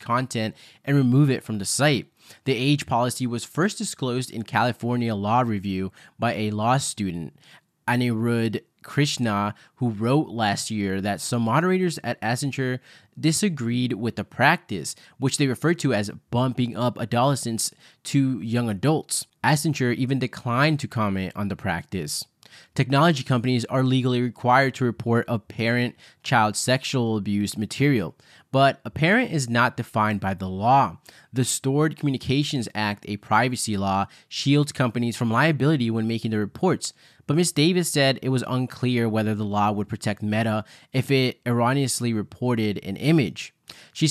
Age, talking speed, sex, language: 20-39, 150 wpm, male, English